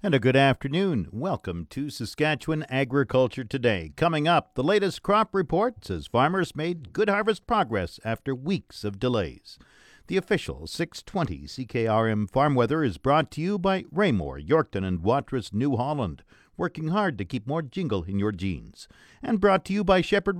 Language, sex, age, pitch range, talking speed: English, male, 50-69, 110-165 Hz, 170 wpm